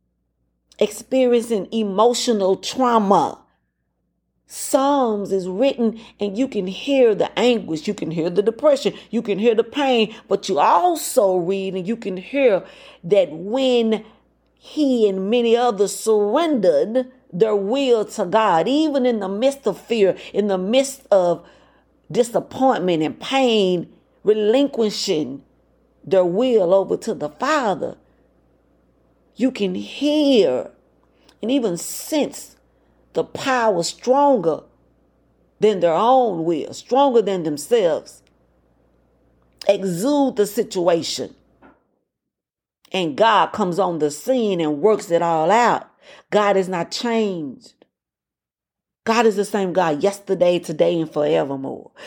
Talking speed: 120 wpm